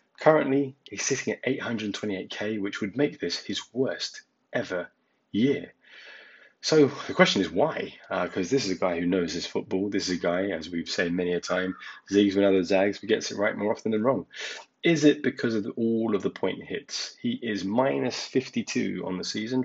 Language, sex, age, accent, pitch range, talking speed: English, male, 20-39, British, 100-140 Hz, 200 wpm